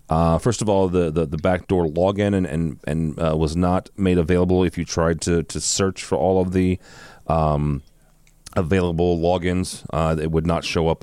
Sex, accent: male, American